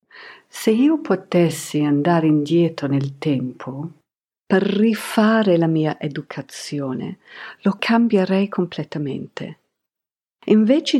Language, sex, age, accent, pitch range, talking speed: Italian, female, 50-69, native, 150-215 Hz, 85 wpm